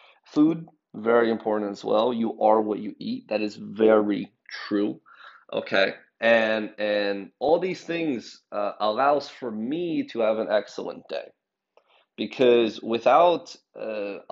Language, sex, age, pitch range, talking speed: English, male, 30-49, 105-130 Hz, 135 wpm